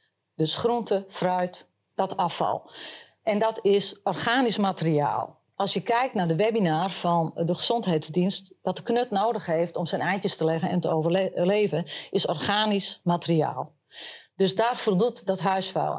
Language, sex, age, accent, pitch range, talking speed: Dutch, female, 40-59, Dutch, 170-215 Hz, 150 wpm